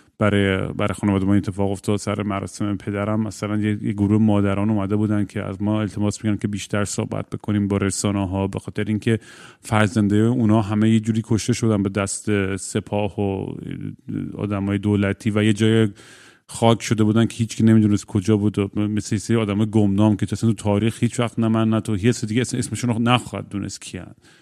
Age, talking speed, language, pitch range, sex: 30-49, 180 wpm, Persian, 100-115 Hz, male